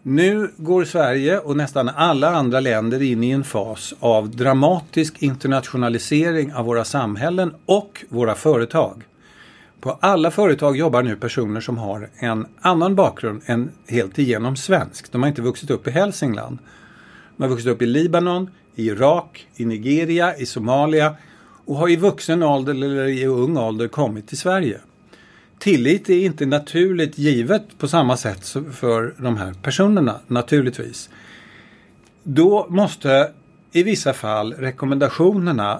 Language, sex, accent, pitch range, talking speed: English, male, Swedish, 120-170 Hz, 145 wpm